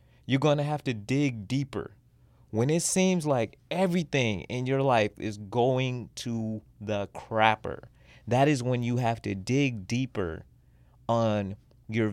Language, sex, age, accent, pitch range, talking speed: English, male, 30-49, American, 100-120 Hz, 145 wpm